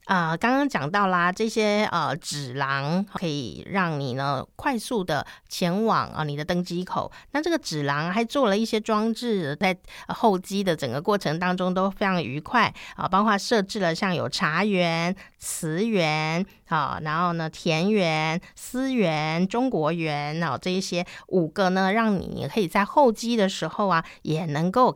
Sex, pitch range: female, 165-220 Hz